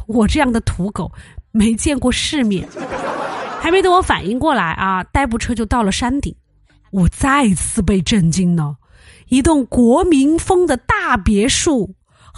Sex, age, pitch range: female, 30-49, 195-300 Hz